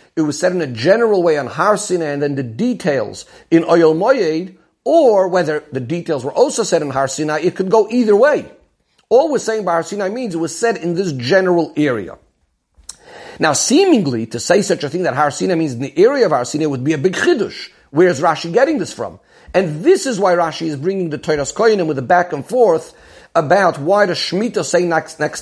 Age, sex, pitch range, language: 50-69, male, 150-195 Hz, English